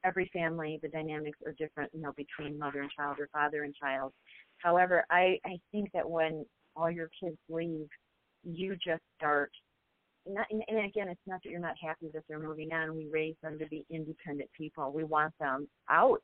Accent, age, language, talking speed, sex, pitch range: American, 40-59, English, 195 wpm, female, 155-185 Hz